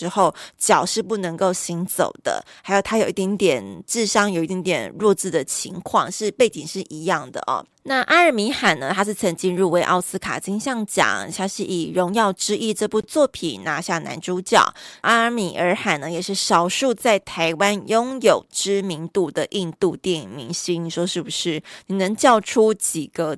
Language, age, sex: Chinese, 20-39, female